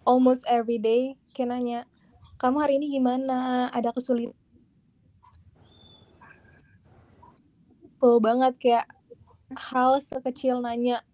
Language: Indonesian